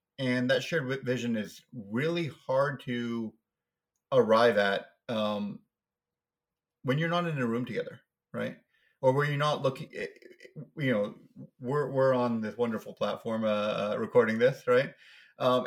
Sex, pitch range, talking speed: male, 125-170 Hz, 140 wpm